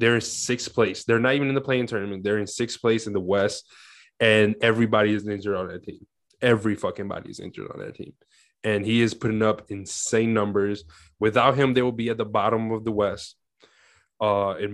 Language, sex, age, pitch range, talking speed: English, male, 20-39, 105-115 Hz, 215 wpm